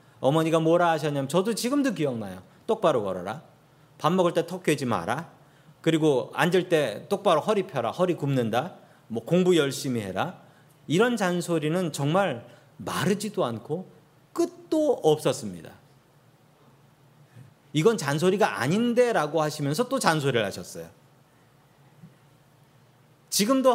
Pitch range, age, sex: 140-195 Hz, 40-59, male